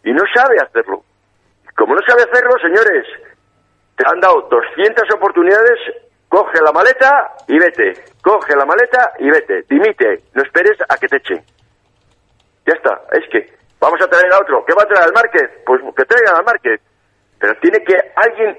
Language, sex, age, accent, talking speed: Spanish, male, 50-69, Spanish, 180 wpm